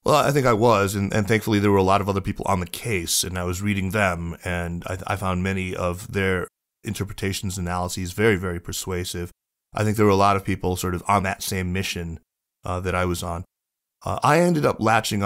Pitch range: 90-100 Hz